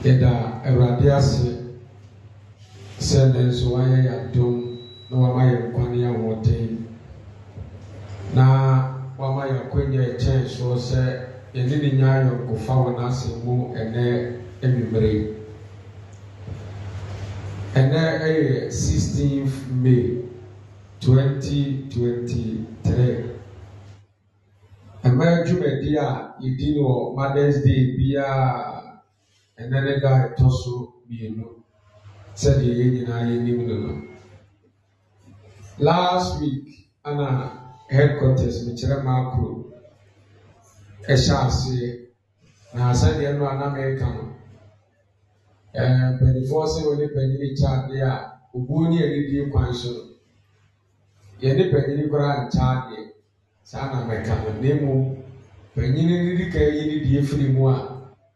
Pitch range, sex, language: 110-135 Hz, male, English